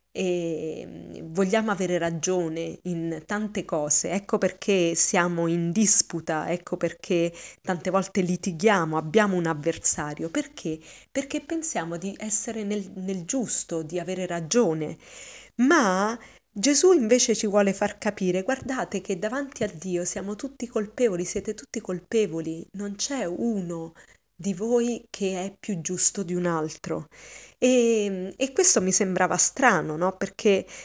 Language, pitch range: Italian, 175-215 Hz